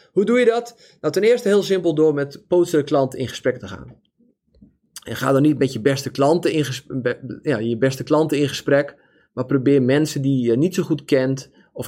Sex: male